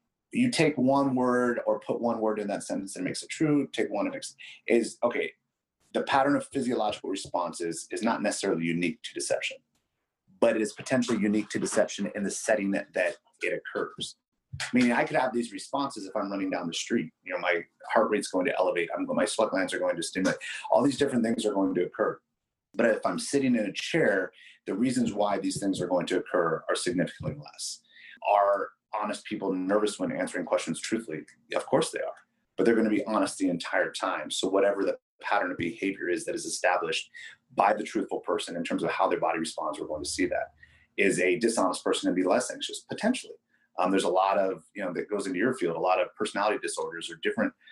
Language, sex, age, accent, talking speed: English, male, 30-49, American, 225 wpm